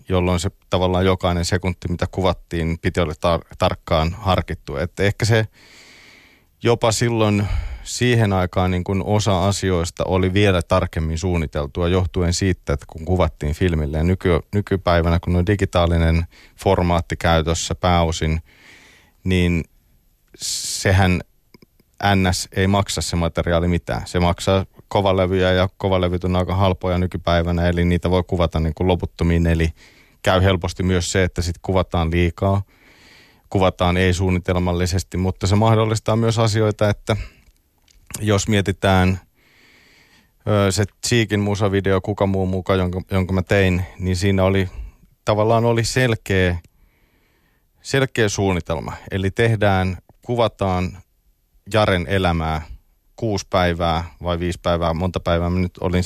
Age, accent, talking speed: 30-49, native, 125 wpm